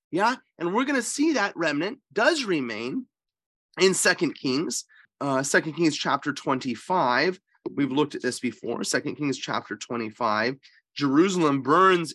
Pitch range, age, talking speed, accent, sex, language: 155-215 Hz, 30-49, 145 wpm, American, male, English